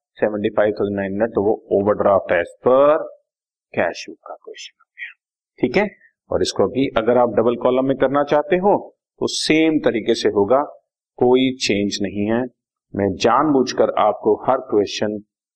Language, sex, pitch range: Hindi, male, 105-135 Hz